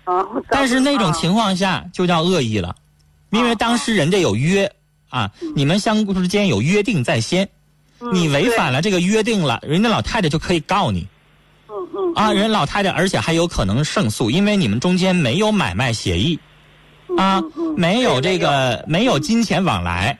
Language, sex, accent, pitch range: Chinese, male, native, 125-200 Hz